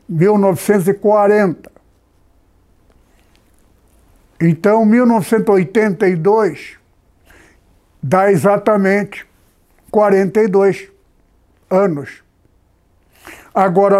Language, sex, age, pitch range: Portuguese, male, 60-79, 170-215 Hz